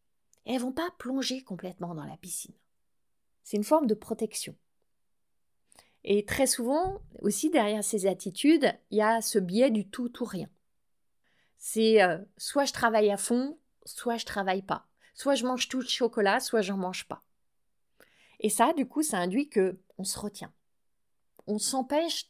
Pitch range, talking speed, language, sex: 210-265 Hz, 170 wpm, French, female